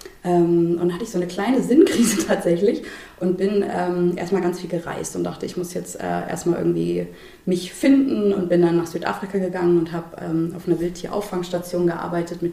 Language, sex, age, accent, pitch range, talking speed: German, female, 20-39, German, 165-185 Hz, 190 wpm